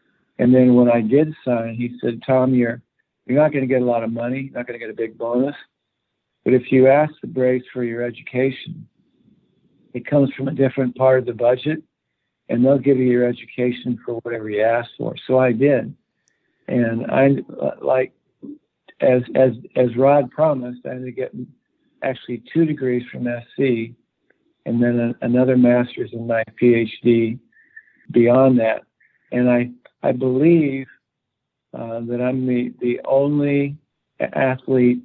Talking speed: 165 wpm